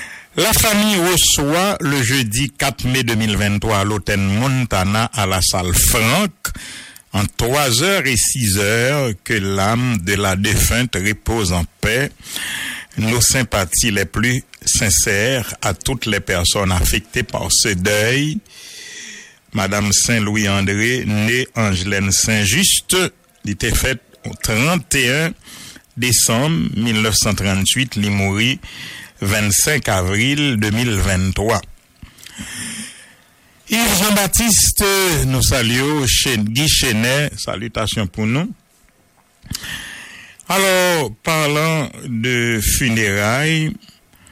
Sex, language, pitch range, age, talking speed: male, English, 100-135 Hz, 60-79, 95 wpm